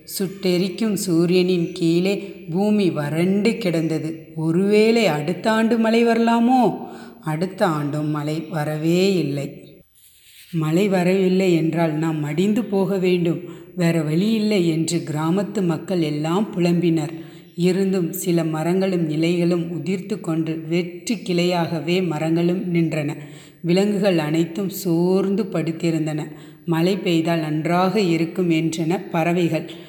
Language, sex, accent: Tamil, female, native